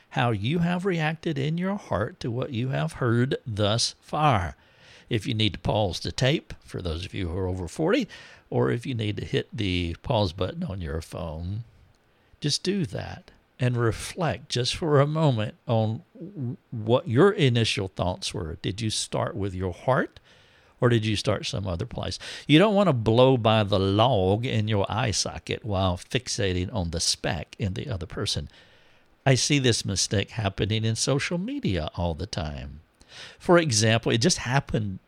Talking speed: 180 wpm